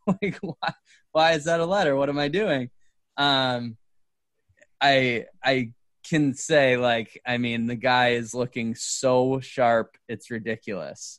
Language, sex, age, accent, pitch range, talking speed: English, male, 20-39, American, 120-145 Hz, 145 wpm